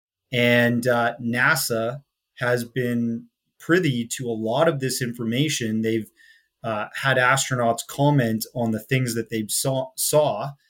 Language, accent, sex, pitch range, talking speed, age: English, American, male, 115-135 Hz, 135 wpm, 30-49